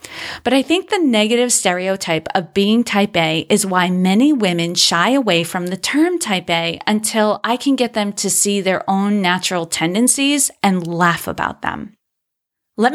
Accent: American